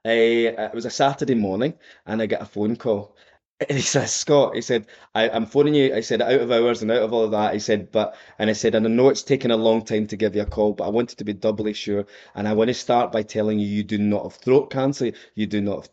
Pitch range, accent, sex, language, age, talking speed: 110-145 Hz, British, male, English, 20-39, 290 wpm